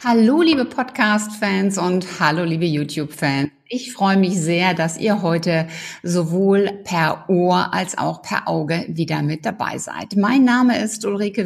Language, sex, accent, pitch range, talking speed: German, female, German, 170-230 Hz, 150 wpm